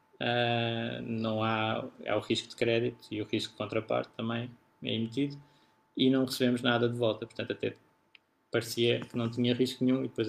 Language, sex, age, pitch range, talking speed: Portuguese, male, 20-39, 115-125 Hz, 185 wpm